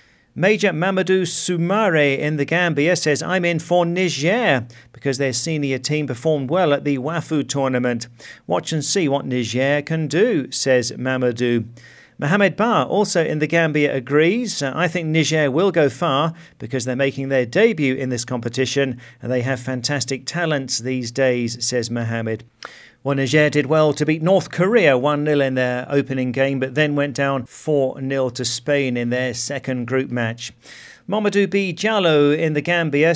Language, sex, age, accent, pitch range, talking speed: English, male, 40-59, British, 125-160 Hz, 170 wpm